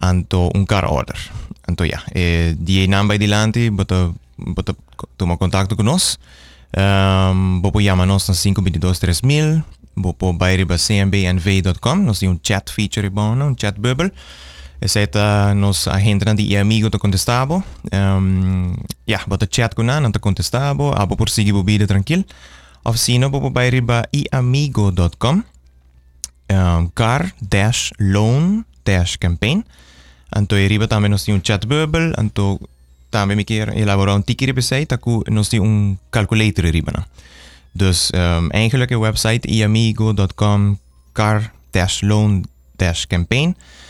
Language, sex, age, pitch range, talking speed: English, male, 20-39, 90-115 Hz, 105 wpm